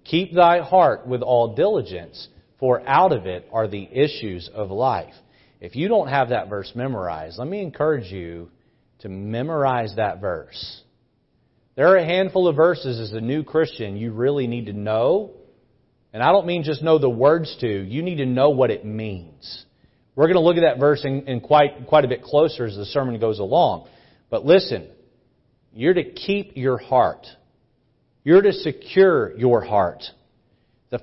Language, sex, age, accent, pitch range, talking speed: English, male, 40-59, American, 120-160 Hz, 180 wpm